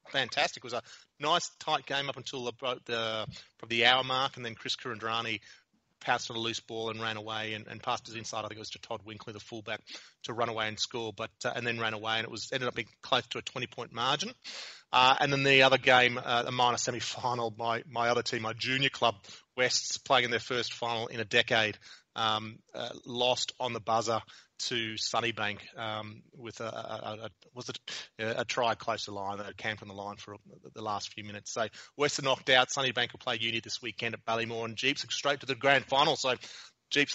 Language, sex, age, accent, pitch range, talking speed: English, male, 30-49, Australian, 110-125 Hz, 225 wpm